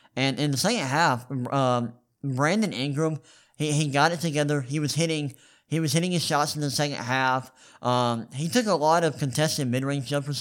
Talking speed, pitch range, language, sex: 195 wpm, 125-150 Hz, English, male